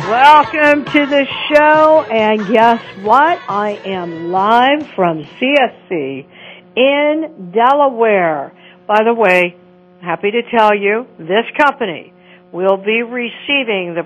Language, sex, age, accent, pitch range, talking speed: English, female, 60-79, American, 180-235 Hz, 115 wpm